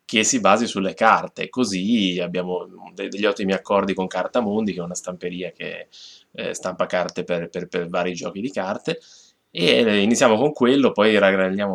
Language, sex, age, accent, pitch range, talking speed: Italian, male, 20-39, native, 90-120 Hz, 165 wpm